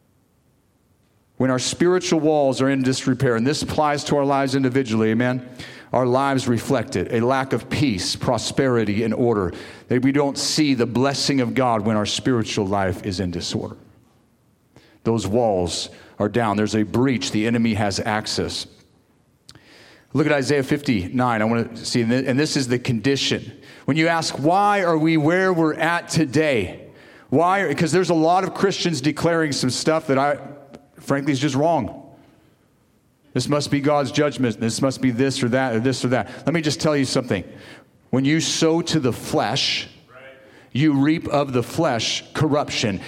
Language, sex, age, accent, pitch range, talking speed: English, male, 40-59, American, 120-150 Hz, 175 wpm